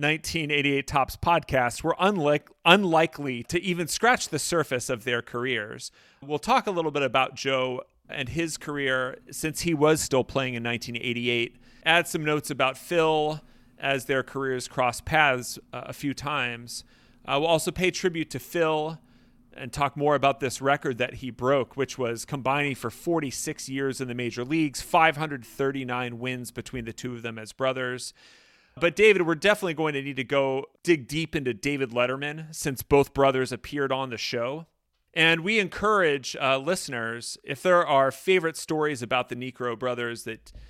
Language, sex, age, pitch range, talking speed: English, male, 40-59, 125-160 Hz, 170 wpm